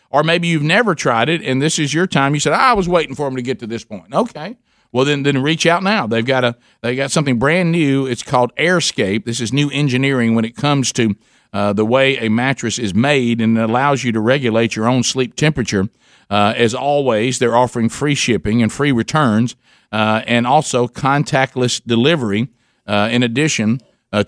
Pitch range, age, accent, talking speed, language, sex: 115-145 Hz, 50-69, American, 215 wpm, English, male